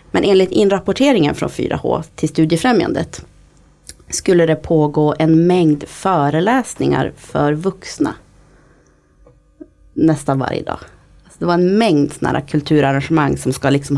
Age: 30-49